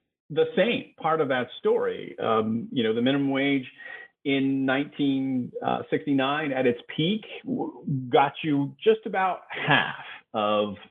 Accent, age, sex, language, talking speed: American, 40-59, male, English, 125 wpm